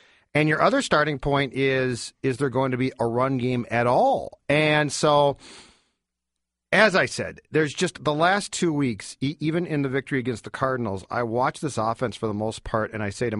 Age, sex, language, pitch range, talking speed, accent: 40-59, male, English, 115-145 Hz, 205 wpm, American